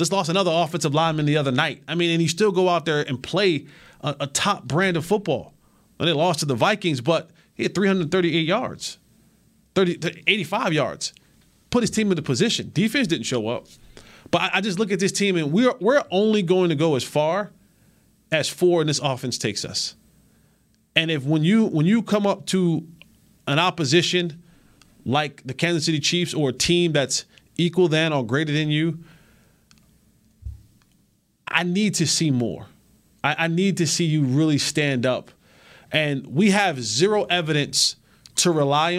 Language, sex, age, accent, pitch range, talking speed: English, male, 30-49, American, 145-185 Hz, 180 wpm